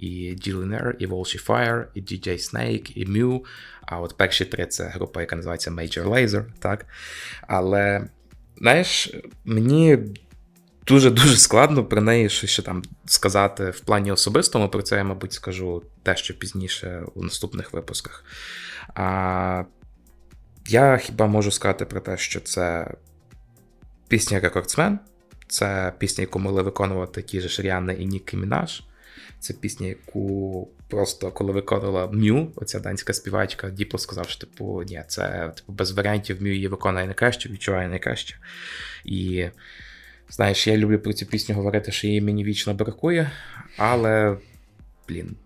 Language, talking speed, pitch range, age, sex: Ukrainian, 140 wpm, 90-110 Hz, 20-39, male